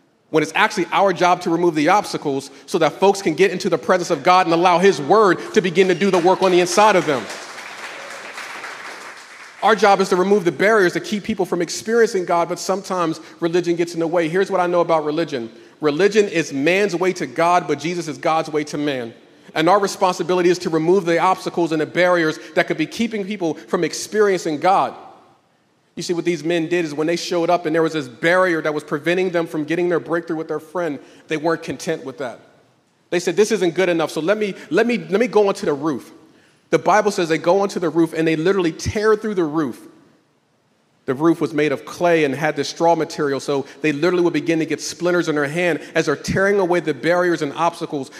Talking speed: 230 wpm